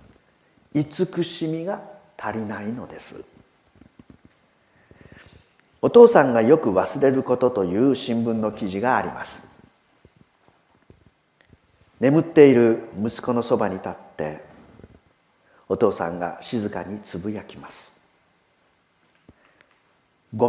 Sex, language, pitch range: male, Japanese, 115-155 Hz